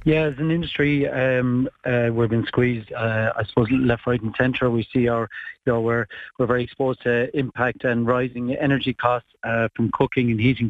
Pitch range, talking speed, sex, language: 120-135 Hz, 200 wpm, male, English